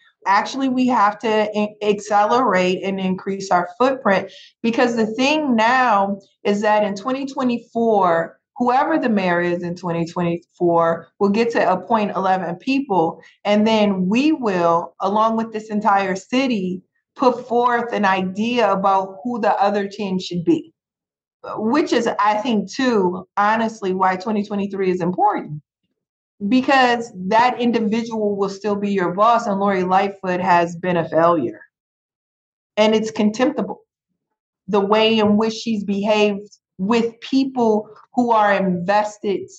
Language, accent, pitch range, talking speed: English, American, 190-235 Hz, 135 wpm